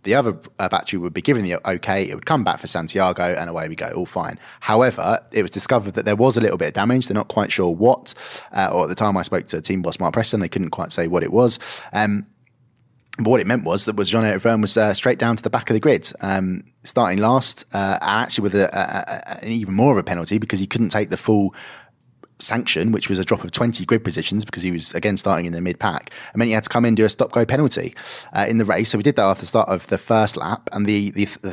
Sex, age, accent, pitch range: male, 20-39, British, 100-120 Hz